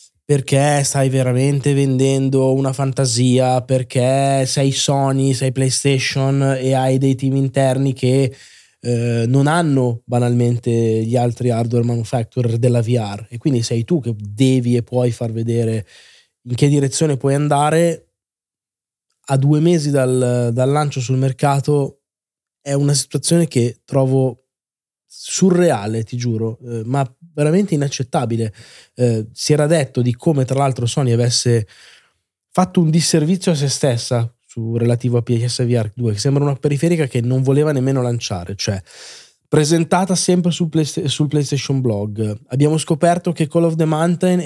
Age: 20-39